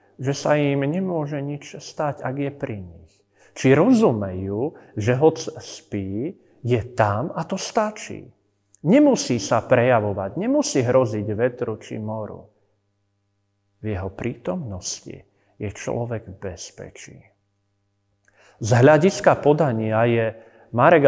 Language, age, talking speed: Slovak, 40-59, 115 wpm